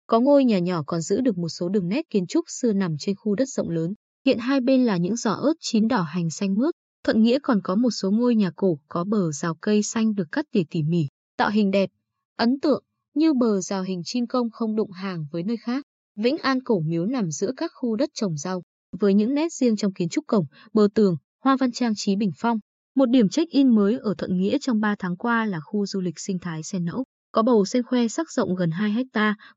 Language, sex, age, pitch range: Vietnamese, female, 20-39, 185-245 Hz